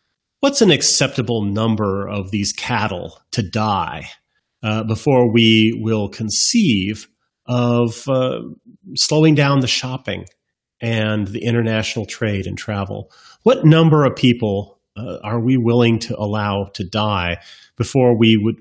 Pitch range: 110-145 Hz